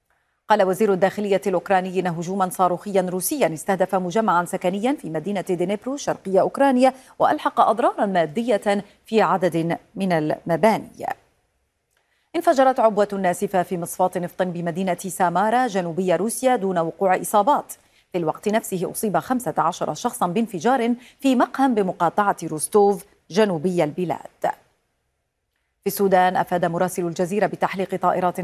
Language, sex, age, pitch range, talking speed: Arabic, female, 40-59, 175-230 Hz, 120 wpm